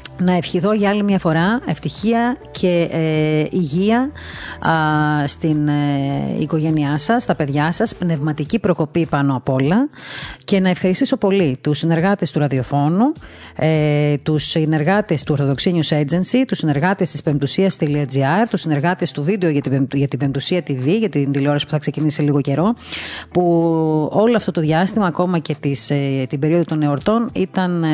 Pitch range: 150-185 Hz